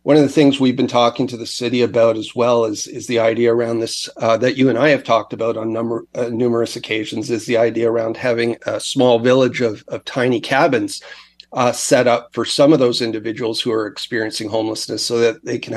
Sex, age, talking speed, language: male, 40-59, 230 wpm, English